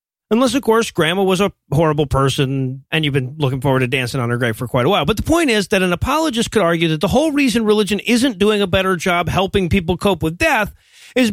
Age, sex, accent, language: 30-49, male, American, English